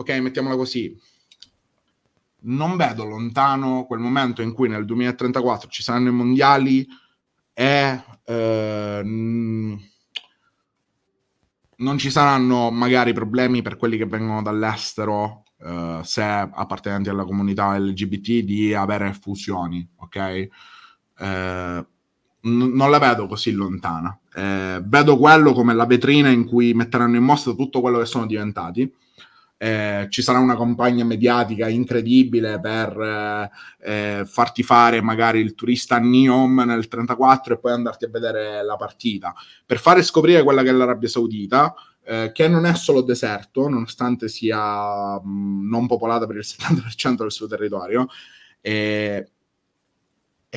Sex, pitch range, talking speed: male, 105-125 Hz, 130 wpm